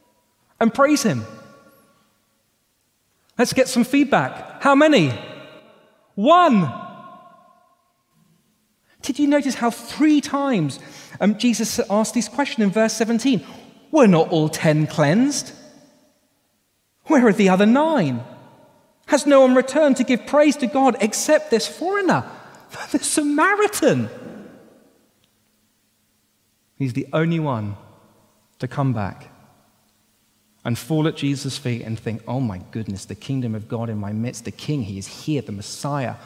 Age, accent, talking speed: 30-49, British, 130 wpm